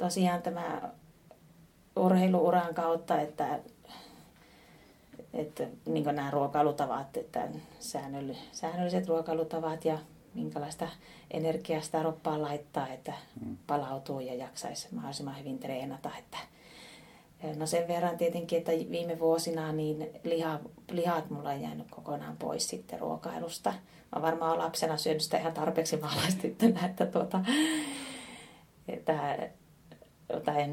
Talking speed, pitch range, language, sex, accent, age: 105 wpm, 145-175 Hz, Finnish, female, native, 30-49